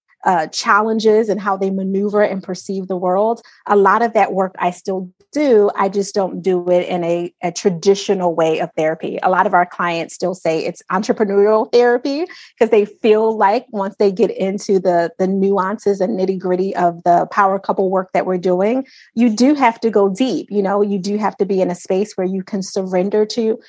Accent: American